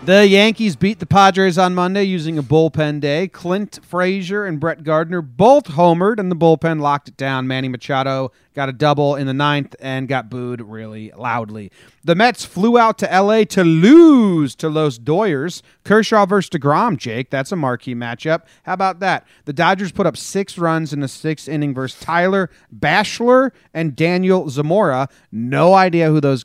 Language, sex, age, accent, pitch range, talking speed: English, male, 30-49, American, 130-180 Hz, 180 wpm